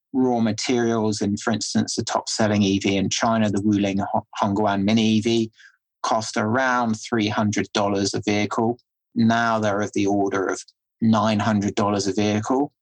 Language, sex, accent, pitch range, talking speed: English, male, British, 105-115 Hz, 140 wpm